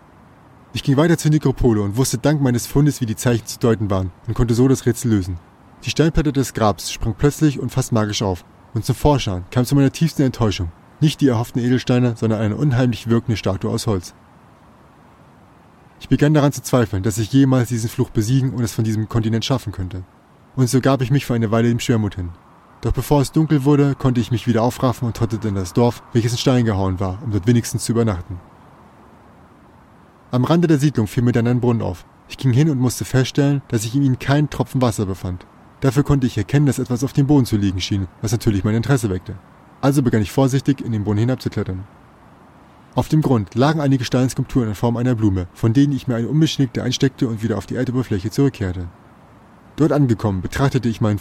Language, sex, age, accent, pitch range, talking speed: German, male, 20-39, German, 110-135 Hz, 215 wpm